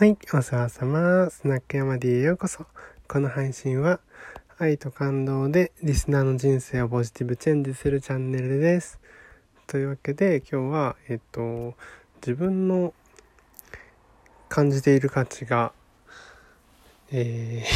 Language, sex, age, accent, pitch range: Japanese, male, 20-39, native, 115-155 Hz